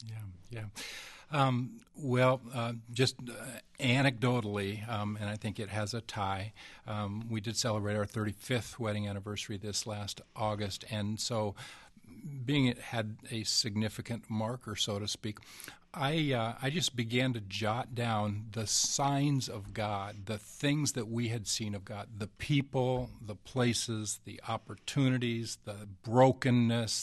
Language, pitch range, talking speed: English, 105-125 Hz, 145 wpm